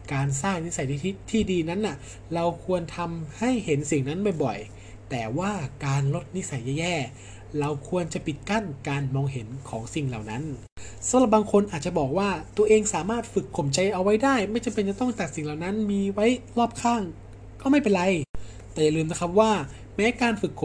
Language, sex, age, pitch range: Thai, male, 20-39, 135-200 Hz